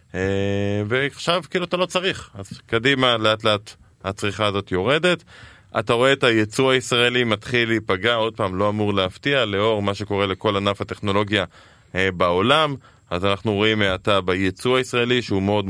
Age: 20-39